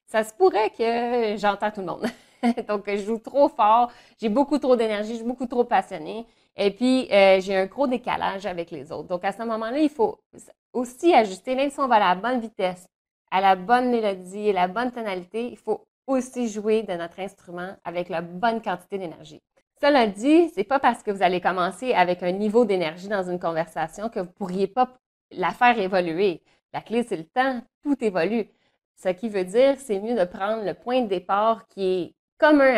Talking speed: 210 wpm